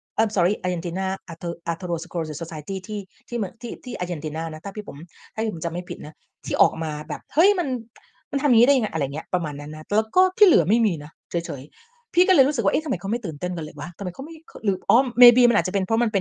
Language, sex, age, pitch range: Thai, female, 30-49, 175-245 Hz